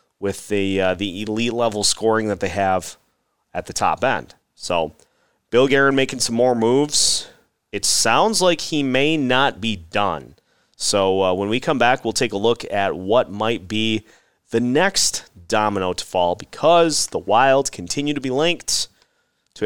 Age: 30-49